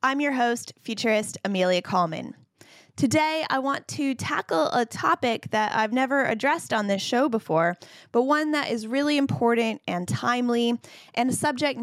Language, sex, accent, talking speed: English, female, American, 160 wpm